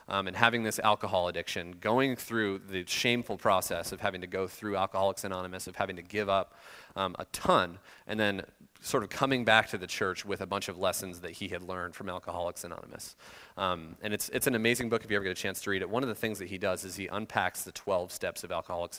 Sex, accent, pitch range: male, American, 95-110 Hz